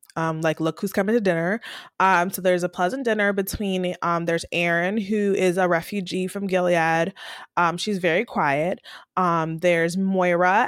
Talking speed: 170 wpm